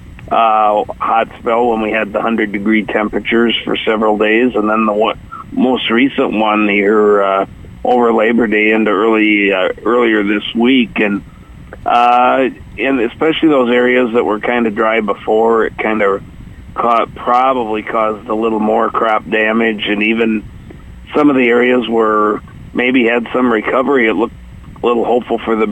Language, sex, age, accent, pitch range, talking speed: English, male, 50-69, American, 105-120 Hz, 170 wpm